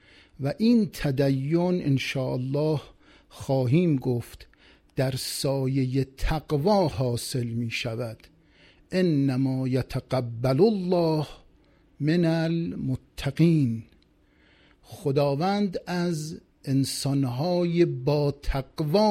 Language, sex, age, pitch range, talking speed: Persian, male, 50-69, 130-170 Hz, 70 wpm